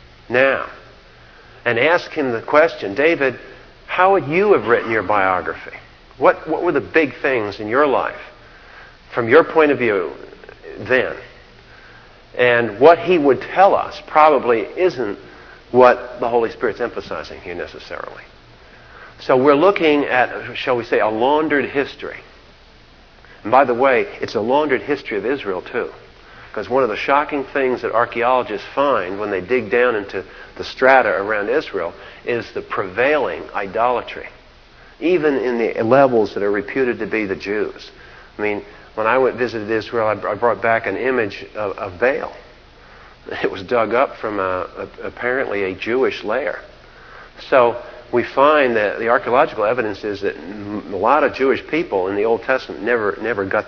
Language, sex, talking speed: English, male, 160 wpm